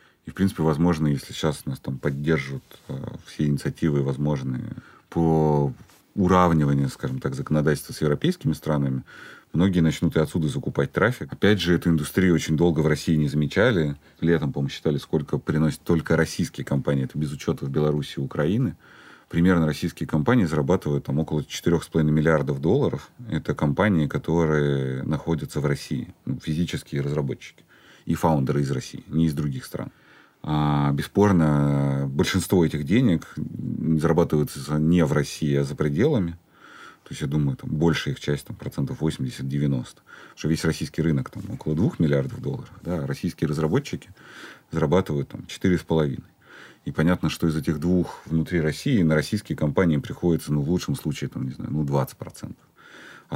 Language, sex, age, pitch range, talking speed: Russian, male, 30-49, 70-80 Hz, 155 wpm